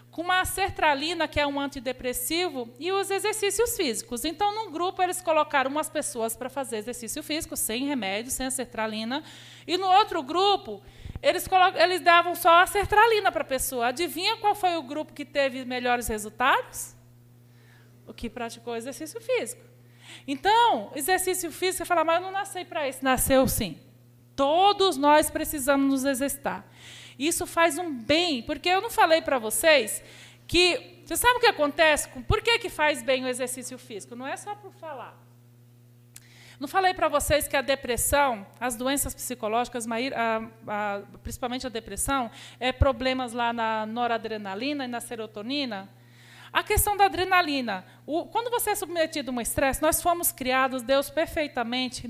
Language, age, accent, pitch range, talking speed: Portuguese, 20-39, Brazilian, 240-345 Hz, 160 wpm